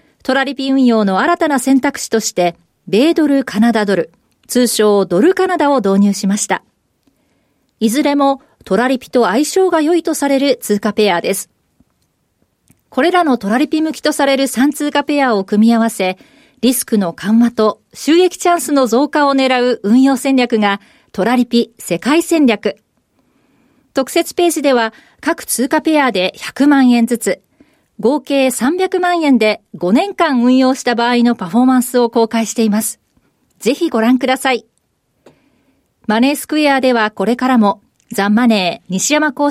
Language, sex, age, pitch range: Japanese, female, 40-59, 220-285 Hz